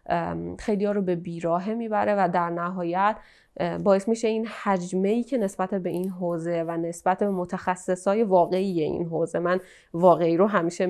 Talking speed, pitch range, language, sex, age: 160 wpm, 175-215 Hz, Persian, female, 20-39